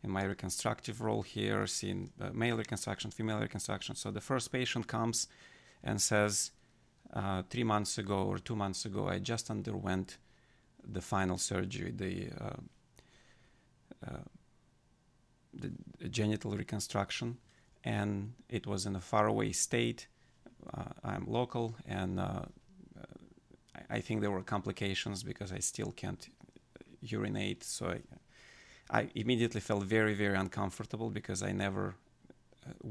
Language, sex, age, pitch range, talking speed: English, male, 40-59, 100-115 Hz, 135 wpm